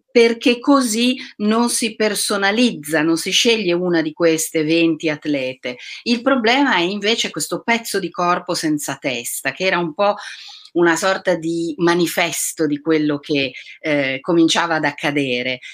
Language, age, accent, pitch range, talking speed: Italian, 40-59, native, 155-215 Hz, 145 wpm